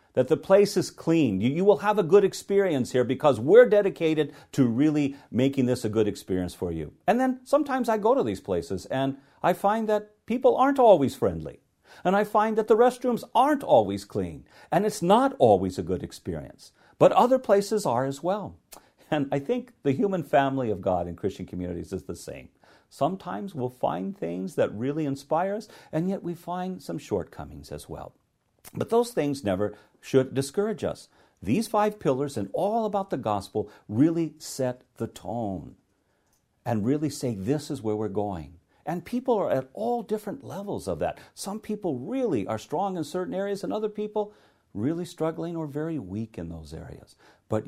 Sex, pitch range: male, 125-205 Hz